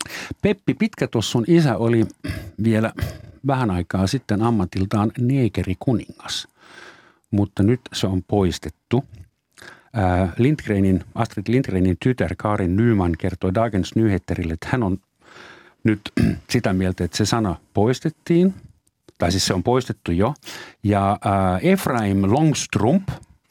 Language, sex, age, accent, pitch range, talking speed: Finnish, male, 50-69, native, 95-120 Hz, 115 wpm